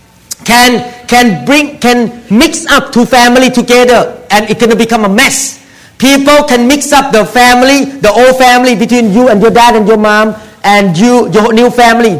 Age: 50-69